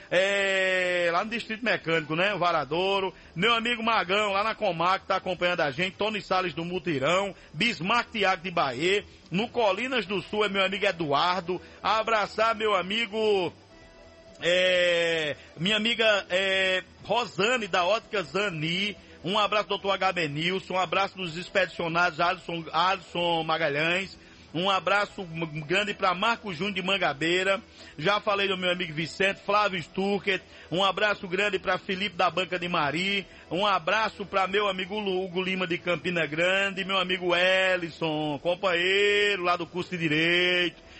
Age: 50-69